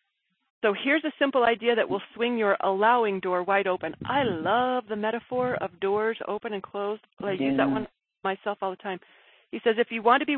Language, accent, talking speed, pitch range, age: English, American, 215 wpm, 195-235 Hz, 40-59